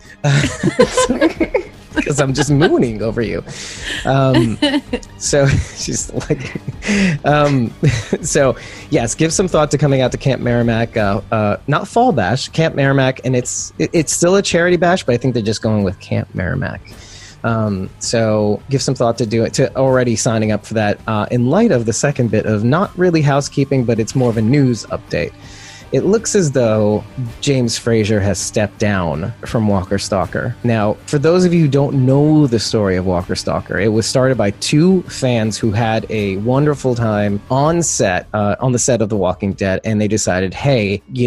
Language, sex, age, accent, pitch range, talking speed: English, male, 30-49, American, 110-145 Hz, 185 wpm